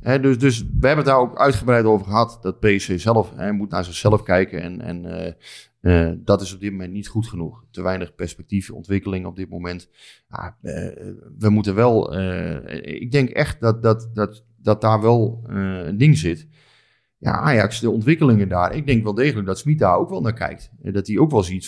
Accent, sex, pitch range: Dutch, male, 100-125 Hz